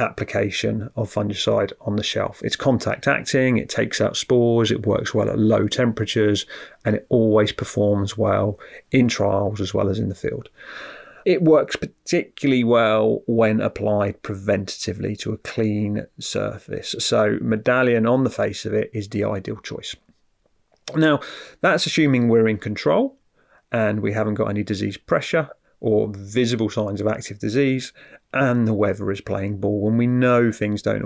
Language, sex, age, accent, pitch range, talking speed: English, male, 30-49, British, 105-125 Hz, 160 wpm